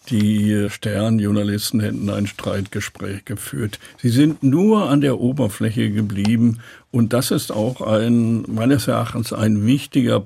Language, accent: German, German